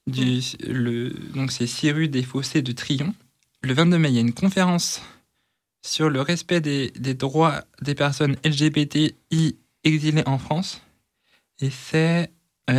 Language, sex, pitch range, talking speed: French, male, 130-160 Hz, 155 wpm